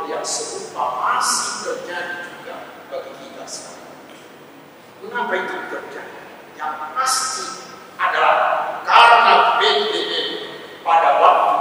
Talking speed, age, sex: 95 wpm, 50-69, male